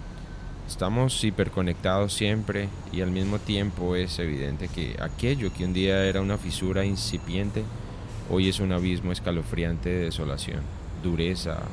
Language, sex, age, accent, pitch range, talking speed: Spanish, male, 30-49, Colombian, 85-100 Hz, 135 wpm